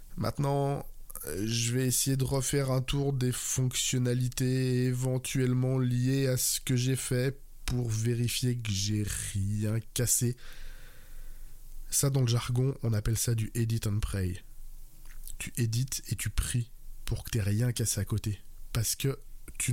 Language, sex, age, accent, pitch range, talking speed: French, male, 20-39, French, 115-135 Hz, 150 wpm